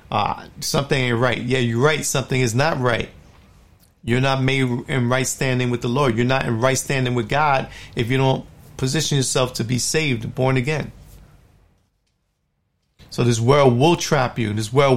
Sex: male